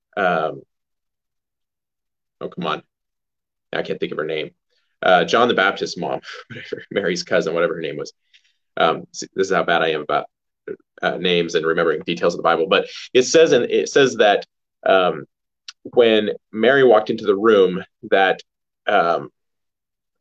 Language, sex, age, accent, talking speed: English, male, 30-49, American, 160 wpm